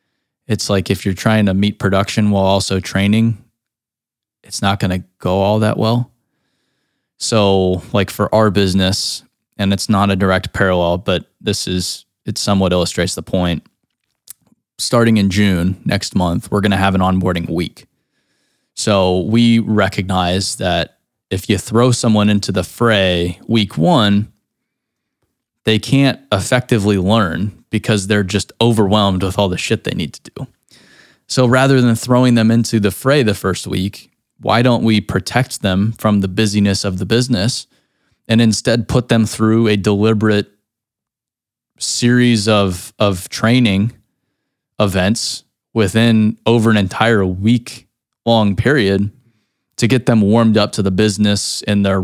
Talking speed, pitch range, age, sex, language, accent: 150 wpm, 95-115 Hz, 20-39, male, English, American